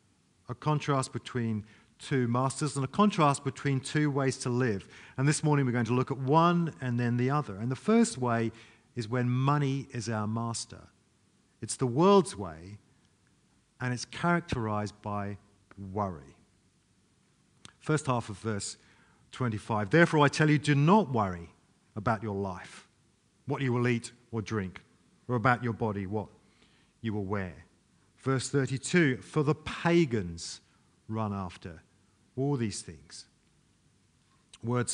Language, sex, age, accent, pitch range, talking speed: English, male, 50-69, British, 110-145 Hz, 145 wpm